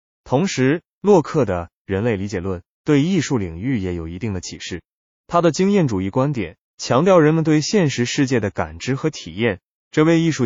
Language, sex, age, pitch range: Chinese, male, 20-39, 95-150 Hz